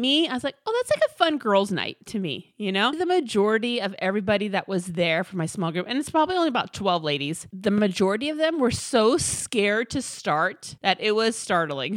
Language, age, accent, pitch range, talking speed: English, 30-49, American, 190-255 Hz, 230 wpm